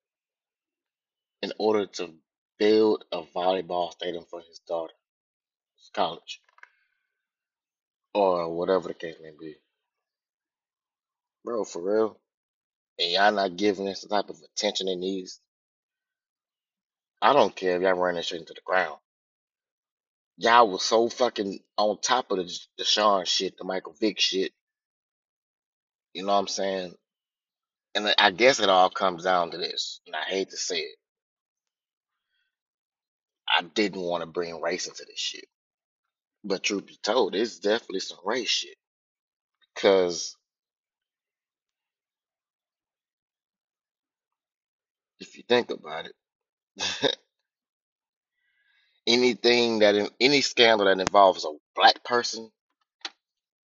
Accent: American